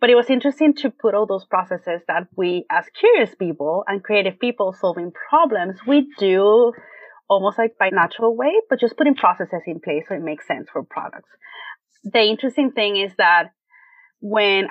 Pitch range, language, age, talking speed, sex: 185-240 Hz, English, 30-49, 180 wpm, female